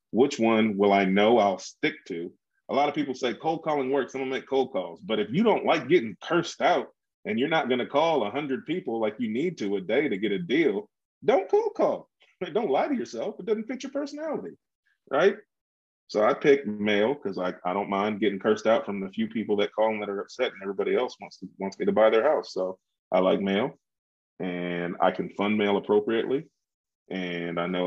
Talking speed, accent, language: 230 wpm, American, English